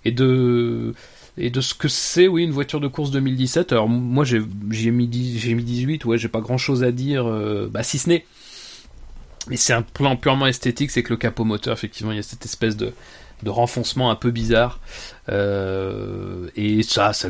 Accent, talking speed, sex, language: French, 200 wpm, male, French